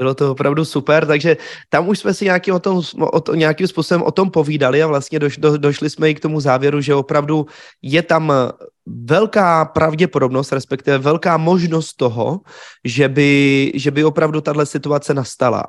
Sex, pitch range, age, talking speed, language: male, 135-160 Hz, 20-39, 155 wpm, Czech